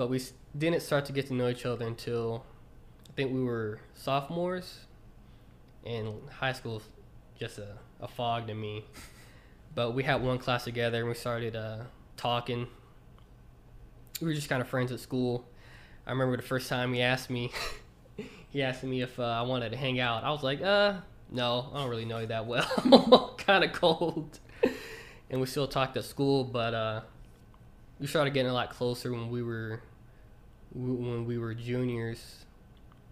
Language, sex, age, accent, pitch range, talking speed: English, male, 20-39, American, 115-130 Hz, 180 wpm